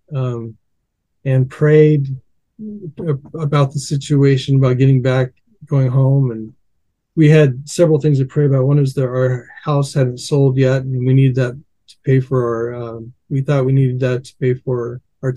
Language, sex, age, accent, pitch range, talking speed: English, male, 40-59, American, 125-145 Hz, 175 wpm